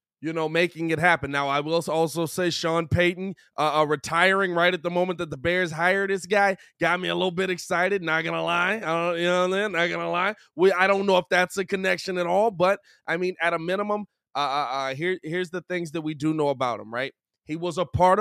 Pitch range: 155-195 Hz